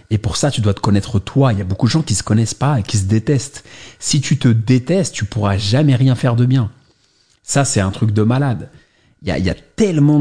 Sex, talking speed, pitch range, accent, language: male, 270 wpm, 105-140 Hz, French, English